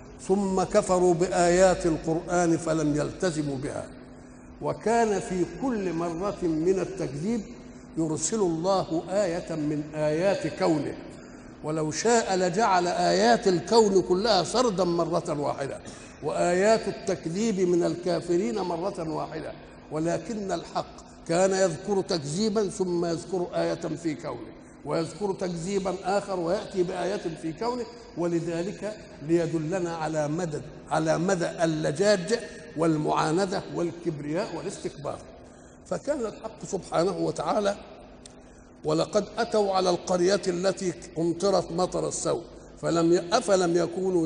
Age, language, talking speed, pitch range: 60-79, Arabic, 105 wpm, 165-195 Hz